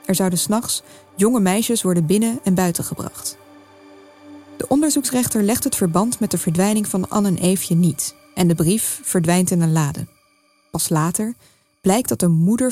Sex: female